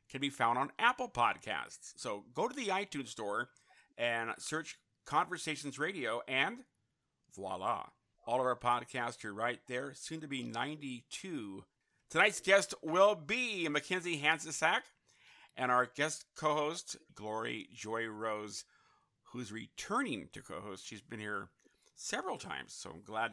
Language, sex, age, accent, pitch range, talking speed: English, male, 50-69, American, 120-160 Hz, 140 wpm